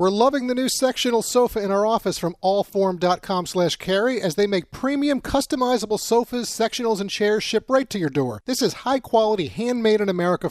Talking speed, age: 170 wpm, 40-59